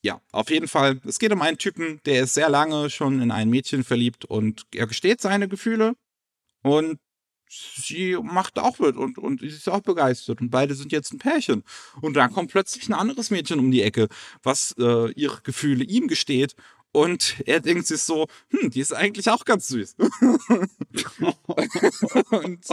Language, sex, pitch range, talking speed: German, male, 115-185 Hz, 180 wpm